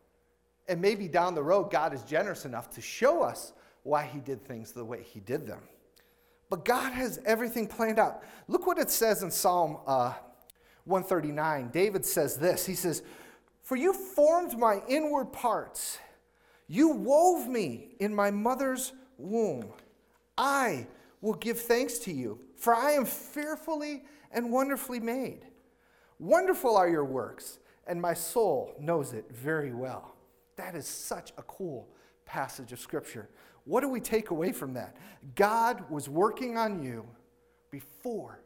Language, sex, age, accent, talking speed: English, male, 40-59, American, 155 wpm